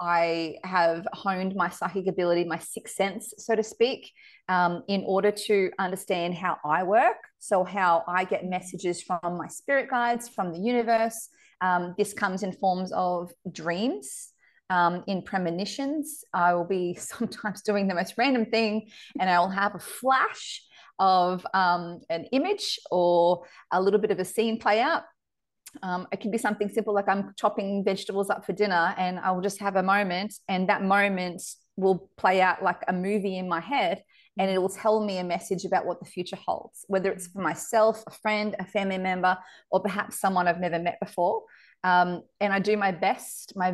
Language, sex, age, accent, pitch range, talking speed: English, female, 30-49, Australian, 180-210 Hz, 185 wpm